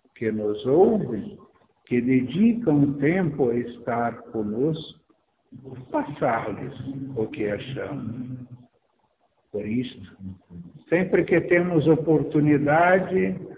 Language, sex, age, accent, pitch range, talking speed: Spanish, male, 60-79, Brazilian, 125-170 Hz, 85 wpm